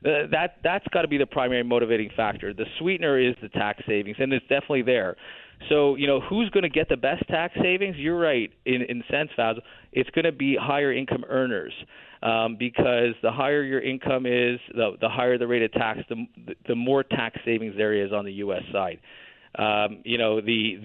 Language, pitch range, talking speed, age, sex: English, 115-140 Hz, 210 wpm, 30-49, male